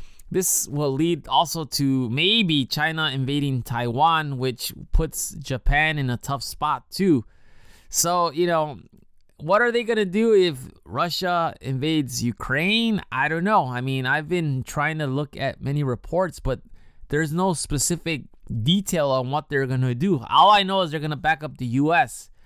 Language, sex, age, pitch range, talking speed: English, male, 20-39, 125-175 Hz, 165 wpm